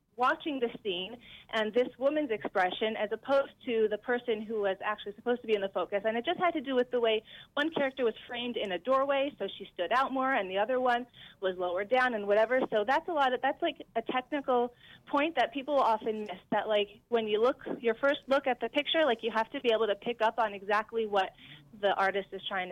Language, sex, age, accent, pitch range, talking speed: English, female, 30-49, American, 190-235 Hz, 245 wpm